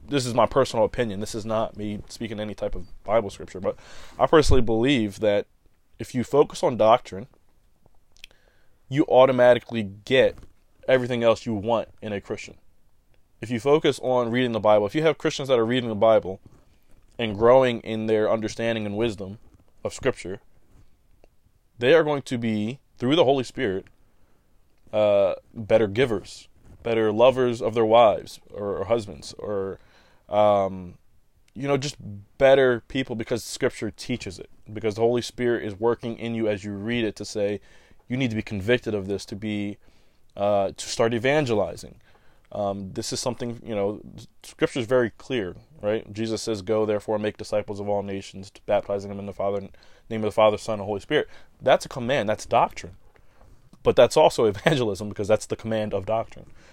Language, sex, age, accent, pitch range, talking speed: English, male, 20-39, American, 100-120 Hz, 180 wpm